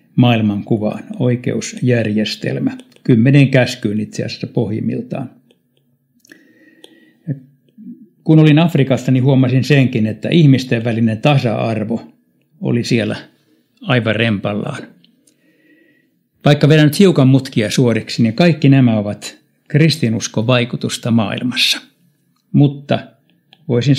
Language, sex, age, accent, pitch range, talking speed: Finnish, male, 60-79, native, 110-140 Hz, 90 wpm